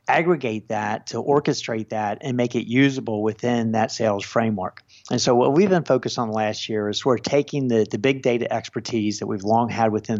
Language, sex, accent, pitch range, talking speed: English, male, American, 110-125 Hz, 205 wpm